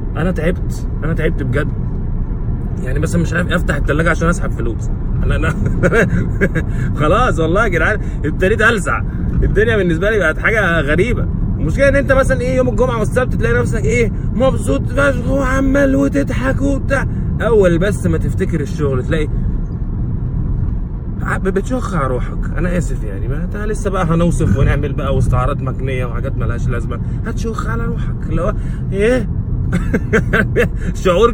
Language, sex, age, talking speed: Arabic, male, 20-39, 135 wpm